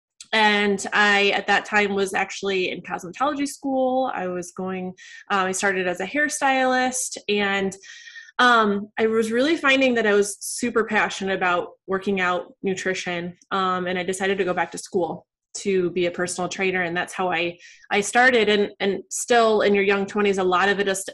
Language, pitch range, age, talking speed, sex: English, 185-220 Hz, 20-39, 185 wpm, female